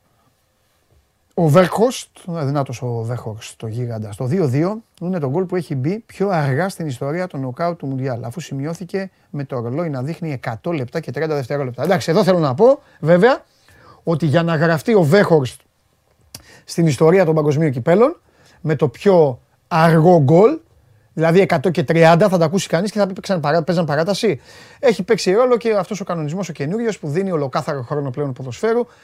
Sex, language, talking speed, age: male, Greek, 125 wpm, 30-49